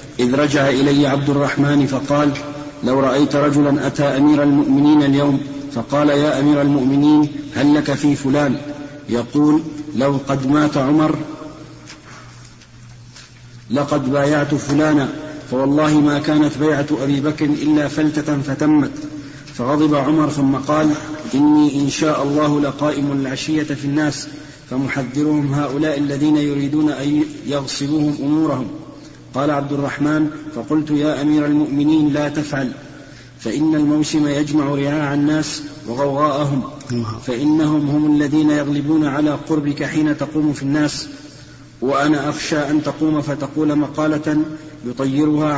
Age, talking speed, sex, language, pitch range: 50-69, 115 wpm, male, Arabic, 140-150 Hz